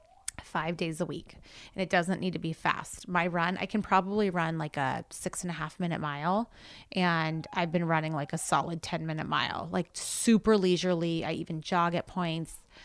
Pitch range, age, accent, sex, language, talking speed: 160-190 Hz, 30-49, American, female, English, 200 wpm